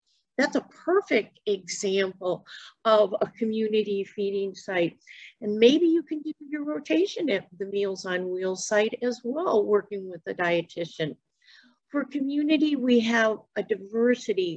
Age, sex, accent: 50-69, female, American